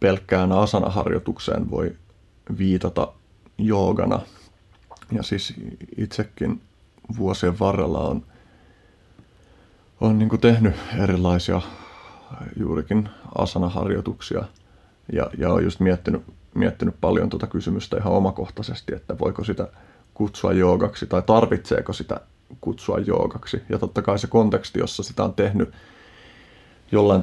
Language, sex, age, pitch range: Finnish, male, 30-49, 90-105 Hz